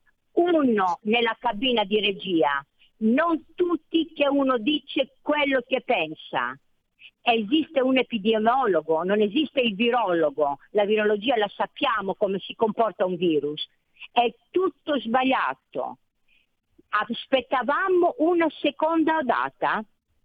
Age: 50-69